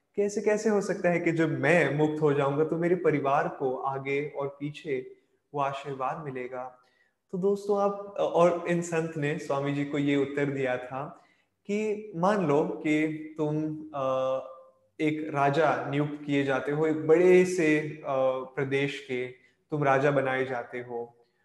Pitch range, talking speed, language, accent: 135-160 Hz, 155 wpm, Hindi, native